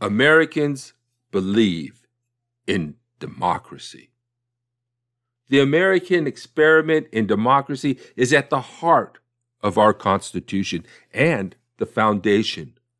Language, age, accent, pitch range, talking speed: English, 50-69, American, 120-145 Hz, 90 wpm